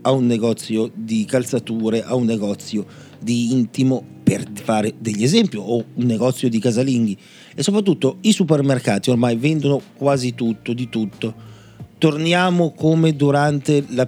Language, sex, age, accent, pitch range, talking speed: Italian, male, 40-59, native, 120-145 Hz, 140 wpm